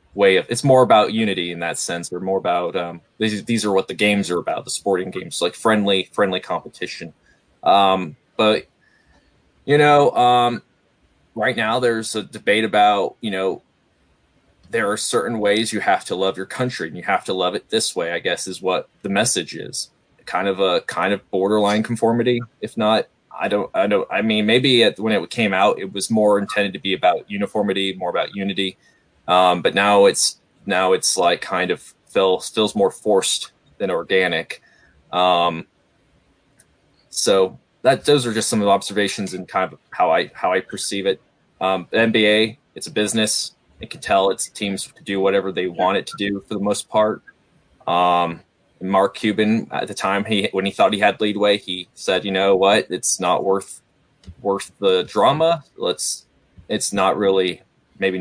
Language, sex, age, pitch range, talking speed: English, male, 20-39, 95-110 Hz, 190 wpm